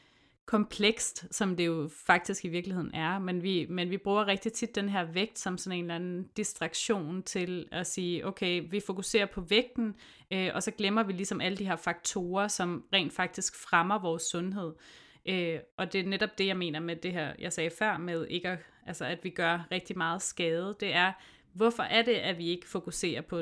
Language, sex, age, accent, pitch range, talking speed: Danish, female, 30-49, native, 170-200 Hz, 200 wpm